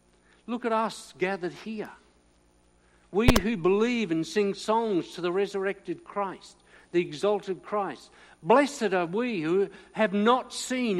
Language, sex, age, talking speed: English, male, 60-79, 135 wpm